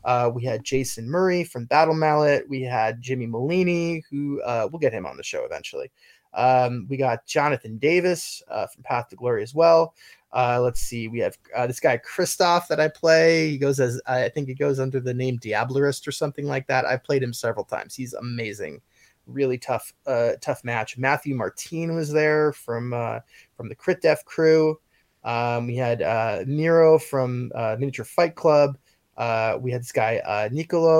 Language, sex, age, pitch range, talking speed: English, male, 20-39, 120-155 Hz, 195 wpm